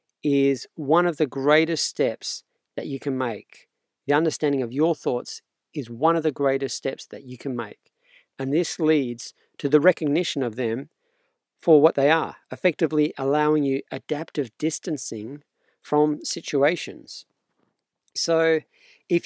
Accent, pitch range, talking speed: Australian, 135-160 Hz, 145 wpm